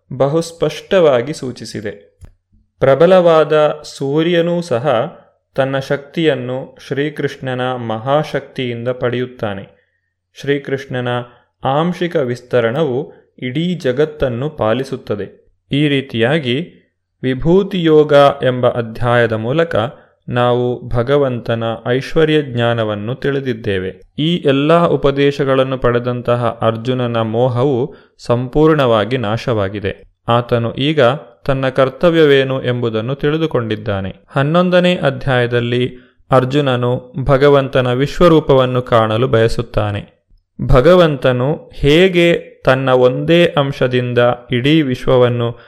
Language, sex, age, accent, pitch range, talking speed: Kannada, male, 20-39, native, 120-145 Hz, 70 wpm